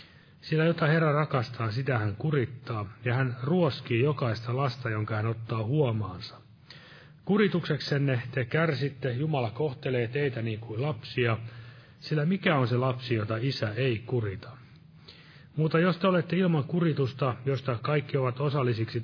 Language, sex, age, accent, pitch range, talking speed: Finnish, male, 30-49, native, 120-155 Hz, 140 wpm